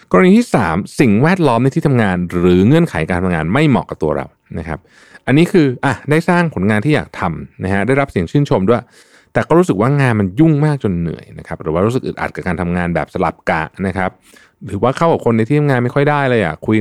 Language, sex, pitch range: Thai, male, 90-130 Hz